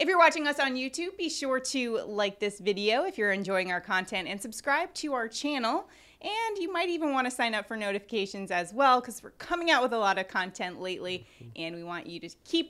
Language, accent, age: English, American, 30-49